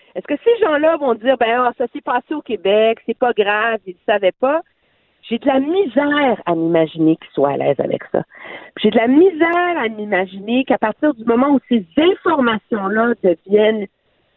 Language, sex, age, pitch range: French, female, 50-69, 205-300 Hz